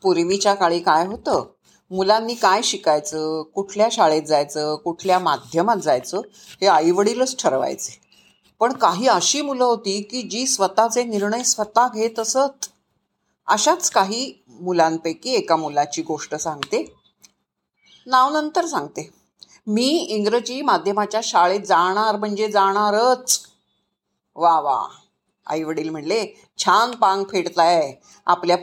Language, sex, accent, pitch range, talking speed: Marathi, female, native, 180-250 Hz, 110 wpm